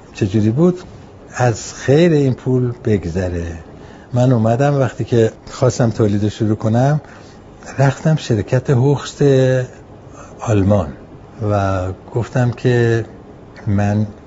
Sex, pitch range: male, 105-135 Hz